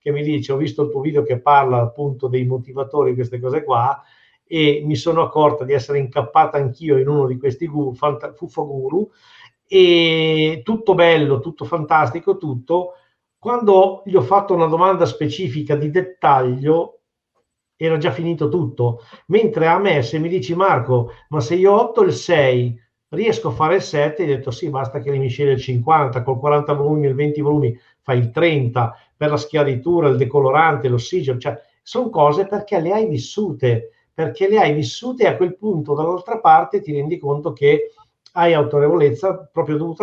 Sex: male